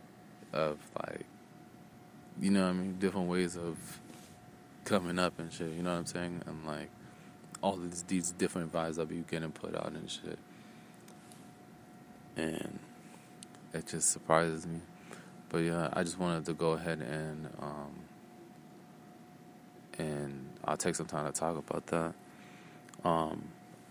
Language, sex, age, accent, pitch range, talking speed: English, male, 20-39, American, 80-90 Hz, 145 wpm